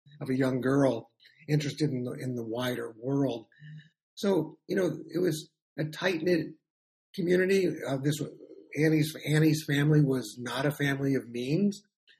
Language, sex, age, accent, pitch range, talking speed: English, male, 50-69, American, 130-155 Hz, 150 wpm